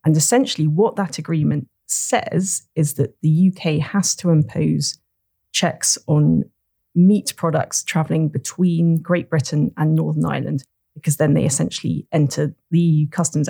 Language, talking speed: English, 140 wpm